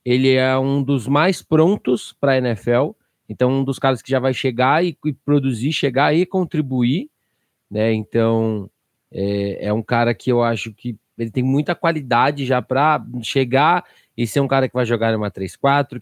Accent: Brazilian